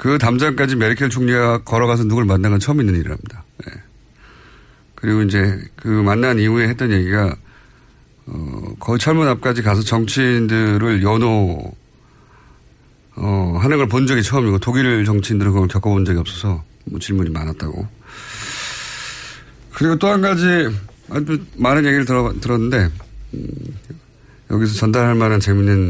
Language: Korean